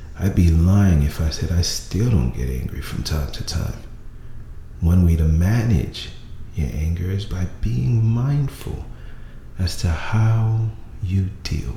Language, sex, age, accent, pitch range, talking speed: English, male, 40-59, American, 65-100 Hz, 155 wpm